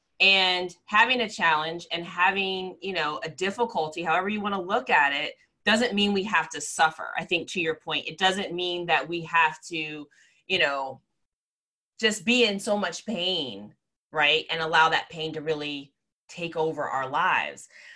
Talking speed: 180 wpm